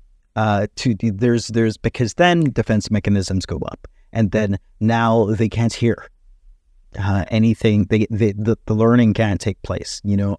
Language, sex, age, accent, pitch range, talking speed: English, male, 30-49, American, 95-115 Hz, 160 wpm